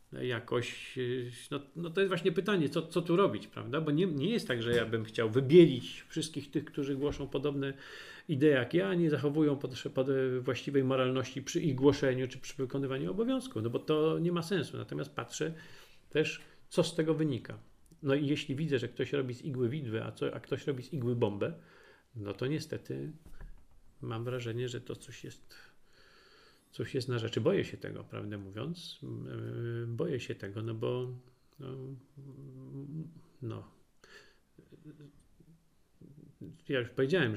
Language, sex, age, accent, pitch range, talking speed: Polish, male, 40-59, native, 120-155 Hz, 160 wpm